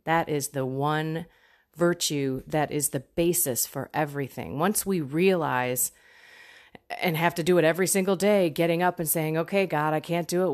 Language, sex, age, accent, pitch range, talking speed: English, female, 30-49, American, 155-195 Hz, 180 wpm